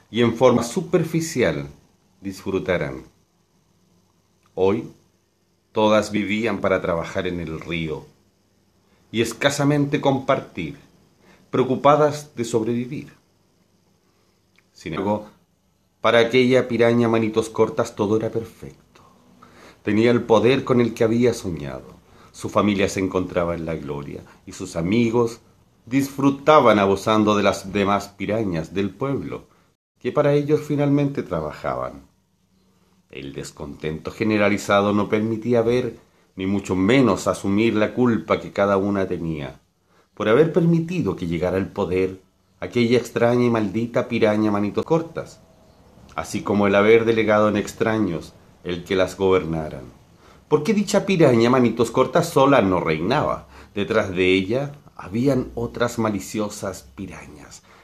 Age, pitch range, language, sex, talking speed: 40-59, 95-120 Hz, Spanish, male, 120 wpm